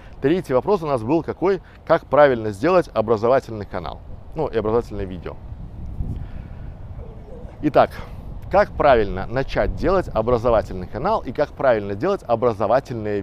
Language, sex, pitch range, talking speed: Russian, male, 105-155 Hz, 120 wpm